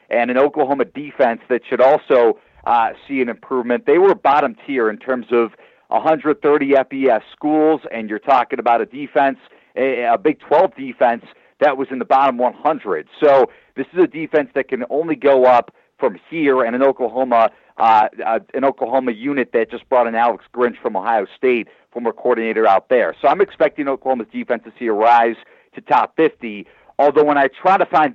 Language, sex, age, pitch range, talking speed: English, male, 40-59, 120-145 Hz, 190 wpm